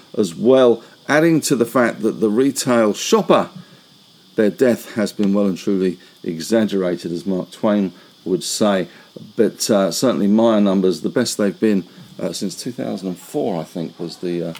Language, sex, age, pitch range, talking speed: English, male, 50-69, 100-150 Hz, 160 wpm